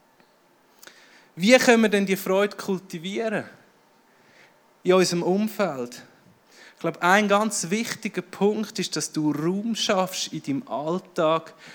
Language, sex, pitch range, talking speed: German, male, 165-215 Hz, 125 wpm